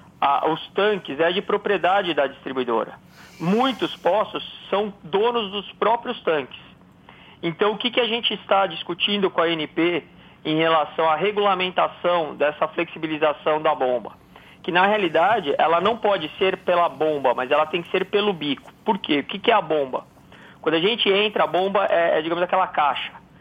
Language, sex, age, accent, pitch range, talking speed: Portuguese, male, 40-59, Brazilian, 170-215 Hz, 175 wpm